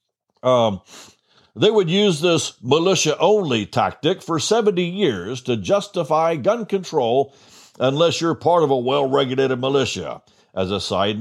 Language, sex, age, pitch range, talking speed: English, male, 50-69, 120-160 Hz, 130 wpm